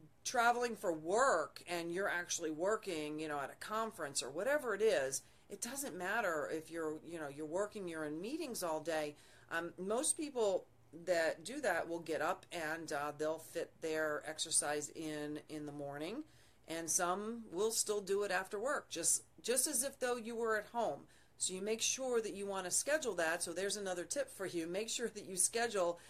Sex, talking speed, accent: female, 200 wpm, American